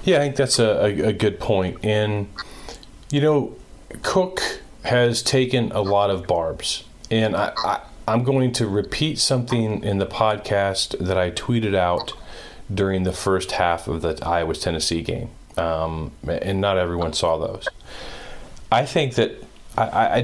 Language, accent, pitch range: English, American, 90-115 Hz